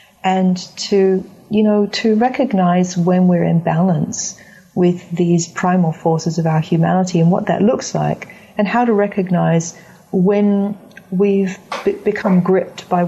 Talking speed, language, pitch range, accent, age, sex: 140 wpm, English, 170-195 Hz, Australian, 40-59, female